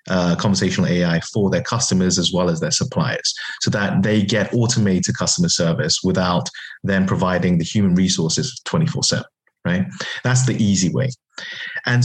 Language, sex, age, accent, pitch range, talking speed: English, male, 30-49, British, 95-130 Hz, 155 wpm